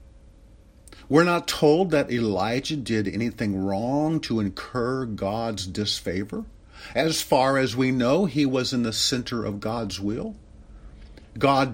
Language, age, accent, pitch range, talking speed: English, 50-69, American, 90-135 Hz, 135 wpm